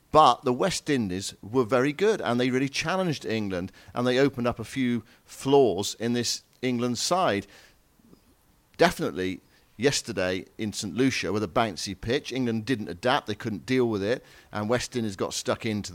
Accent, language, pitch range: British, English, 110-145 Hz